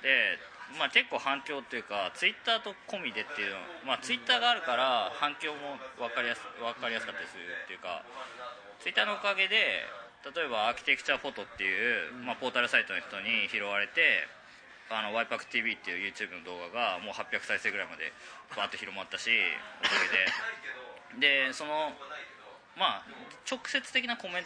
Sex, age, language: male, 20-39, Japanese